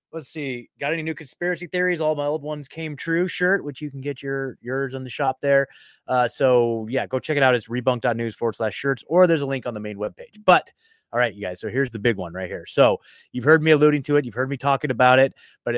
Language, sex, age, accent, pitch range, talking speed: English, male, 20-39, American, 125-155 Hz, 265 wpm